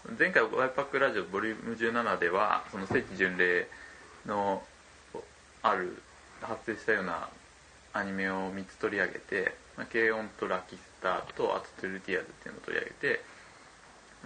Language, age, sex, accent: Japanese, 20-39, male, native